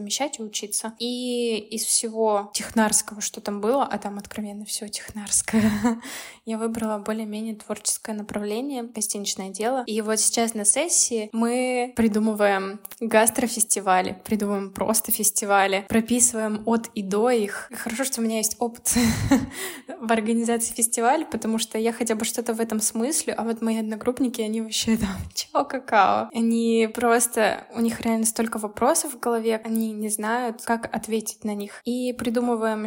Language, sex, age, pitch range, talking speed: Russian, female, 10-29, 220-245 Hz, 150 wpm